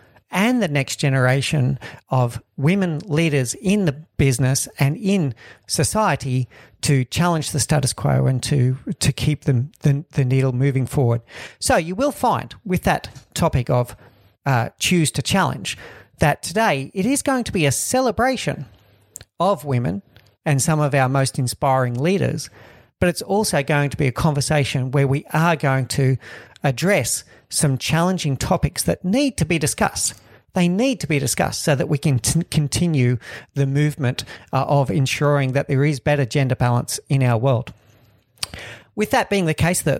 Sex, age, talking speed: male, 50-69, 165 wpm